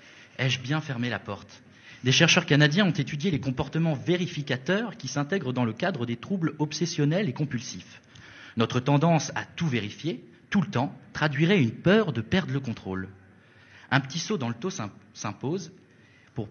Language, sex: French, male